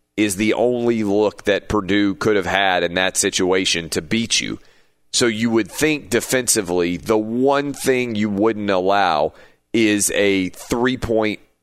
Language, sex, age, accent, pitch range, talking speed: English, male, 40-59, American, 95-115 Hz, 150 wpm